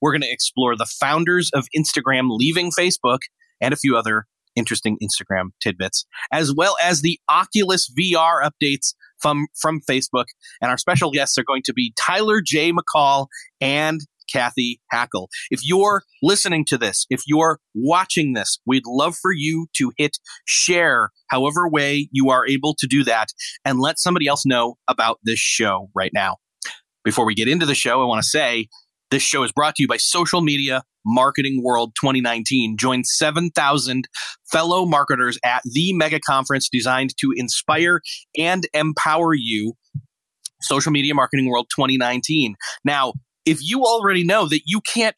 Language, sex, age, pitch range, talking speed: English, male, 30-49, 130-170 Hz, 165 wpm